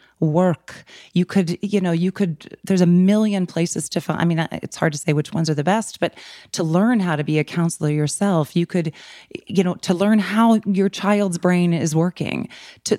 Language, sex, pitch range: English, female, 170-215 Hz